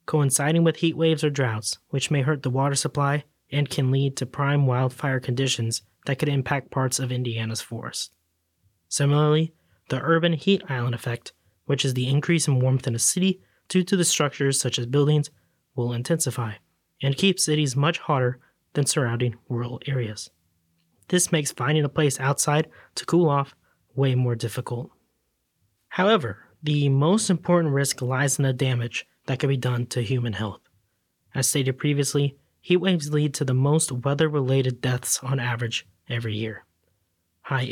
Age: 20-39